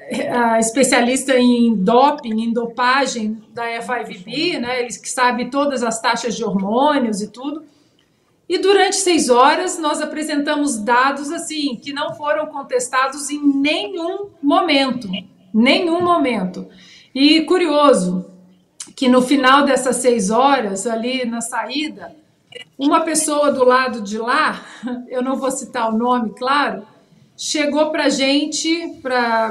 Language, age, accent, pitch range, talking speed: Portuguese, 50-69, Brazilian, 235-295 Hz, 130 wpm